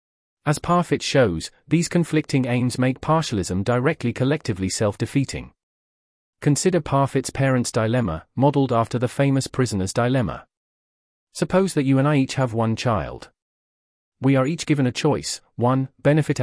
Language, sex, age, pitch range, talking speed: English, male, 40-59, 110-140 Hz, 140 wpm